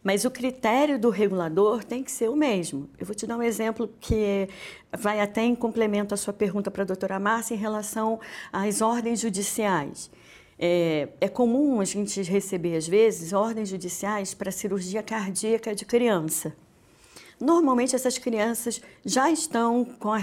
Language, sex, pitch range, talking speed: Portuguese, female, 195-255 Hz, 160 wpm